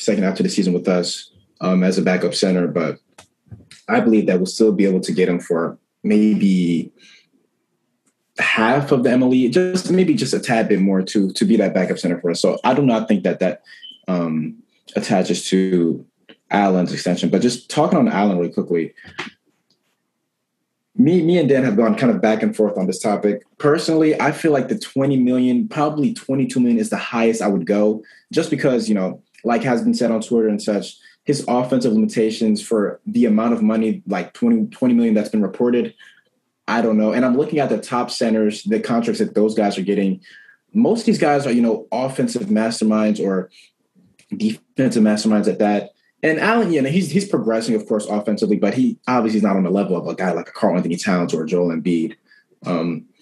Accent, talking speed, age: American, 205 wpm, 20-39